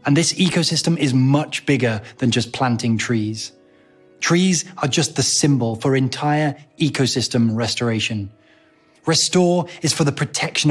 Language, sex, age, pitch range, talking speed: Arabic, male, 20-39, 120-160 Hz, 135 wpm